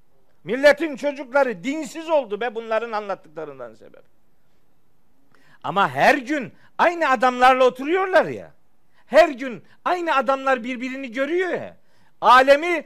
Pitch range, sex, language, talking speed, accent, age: 245-290 Hz, male, Turkish, 105 wpm, native, 50-69